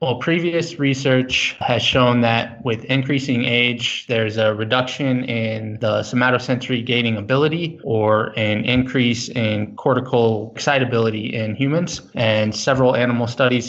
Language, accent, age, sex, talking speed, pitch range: English, American, 20-39, male, 125 wpm, 110-125 Hz